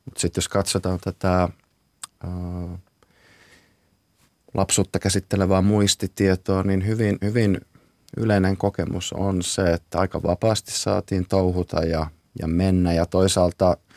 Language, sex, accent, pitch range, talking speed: Finnish, male, native, 85-100 Hz, 110 wpm